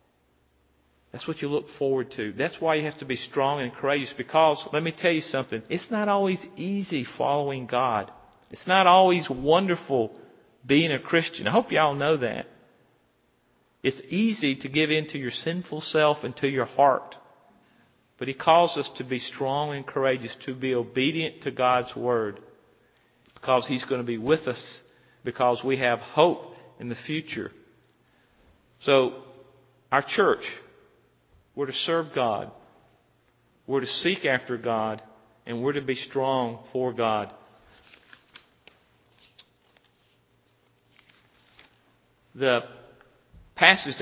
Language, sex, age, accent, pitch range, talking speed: English, male, 40-59, American, 120-145 Hz, 140 wpm